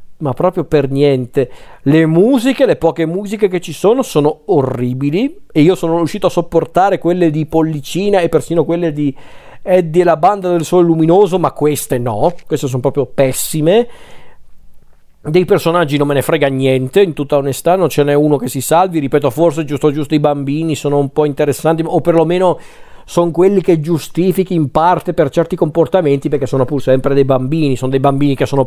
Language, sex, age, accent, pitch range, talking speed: Italian, male, 40-59, native, 135-180 Hz, 185 wpm